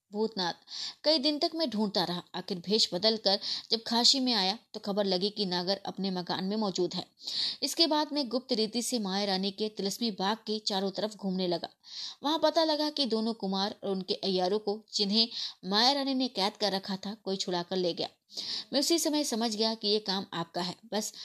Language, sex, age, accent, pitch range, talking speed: Hindi, female, 20-39, native, 190-245 Hz, 210 wpm